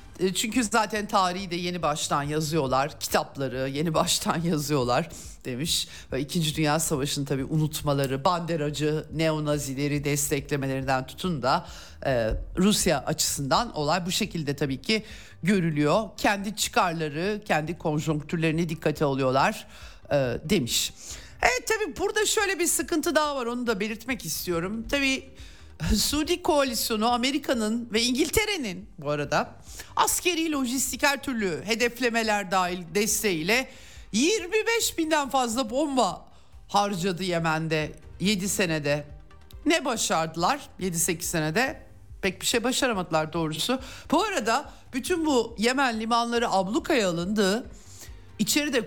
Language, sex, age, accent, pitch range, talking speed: Turkish, male, 50-69, native, 155-245 Hz, 110 wpm